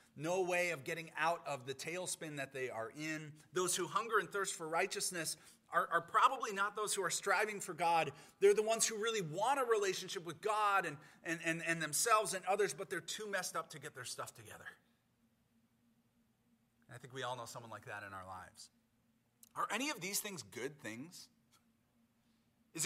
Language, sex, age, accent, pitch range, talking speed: English, male, 30-49, American, 120-190 Hz, 195 wpm